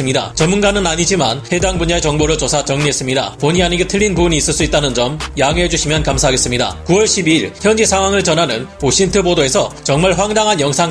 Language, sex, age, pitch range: Korean, male, 30-49, 150-190 Hz